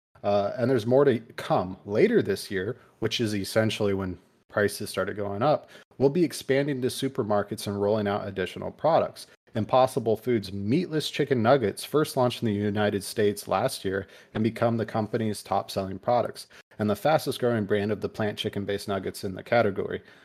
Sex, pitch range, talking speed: male, 100-120 Hz, 170 wpm